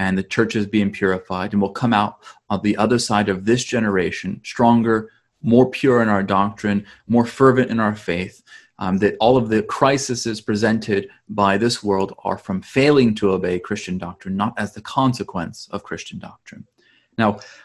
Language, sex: English, male